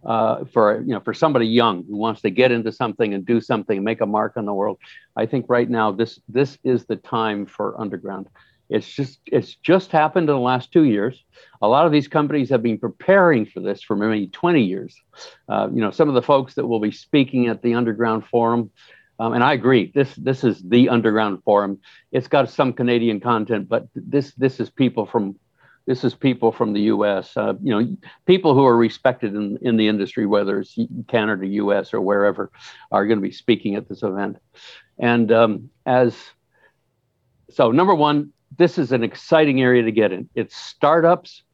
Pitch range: 110-135 Hz